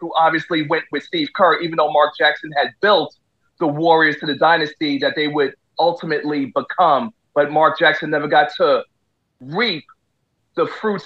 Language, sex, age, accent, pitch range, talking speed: English, male, 40-59, American, 165-250 Hz, 170 wpm